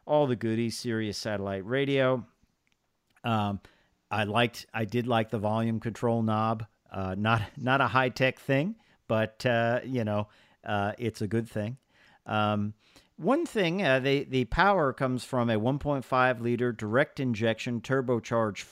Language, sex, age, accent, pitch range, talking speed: English, male, 50-69, American, 105-130 Hz, 150 wpm